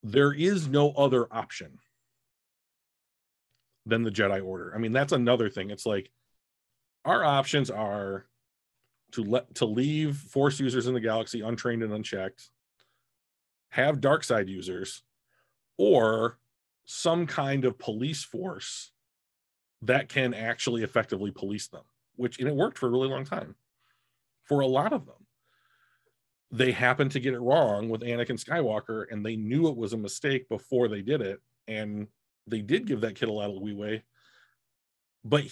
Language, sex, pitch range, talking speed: English, male, 105-135 Hz, 155 wpm